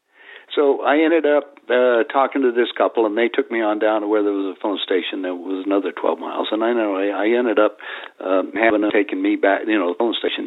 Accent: American